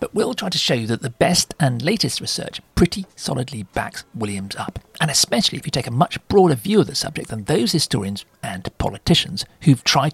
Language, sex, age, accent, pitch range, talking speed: English, male, 50-69, British, 120-175 Hz, 215 wpm